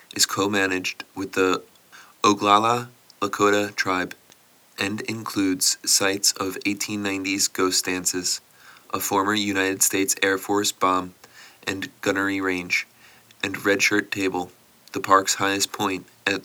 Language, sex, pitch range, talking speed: English, male, 95-105 Hz, 120 wpm